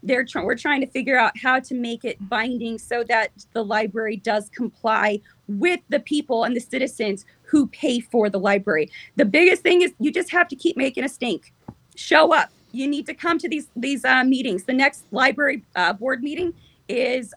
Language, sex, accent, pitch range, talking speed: English, female, American, 235-295 Hz, 200 wpm